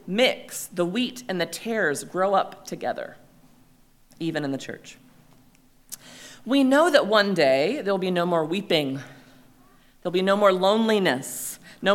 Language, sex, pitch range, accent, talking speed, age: English, female, 170-235 Hz, American, 150 wpm, 40-59